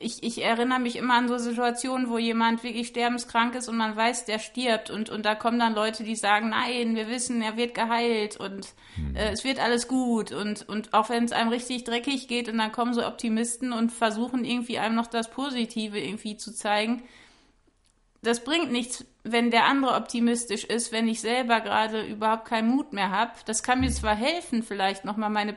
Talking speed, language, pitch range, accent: 205 wpm, German, 220-240 Hz, German